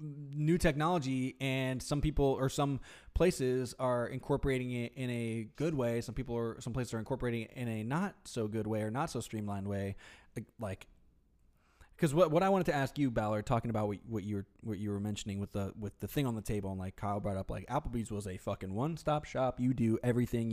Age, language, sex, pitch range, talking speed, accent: 20-39, English, male, 110-145 Hz, 225 wpm, American